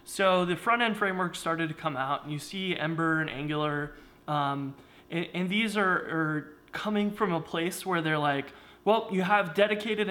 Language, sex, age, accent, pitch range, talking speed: English, male, 20-39, American, 150-185 Hz, 185 wpm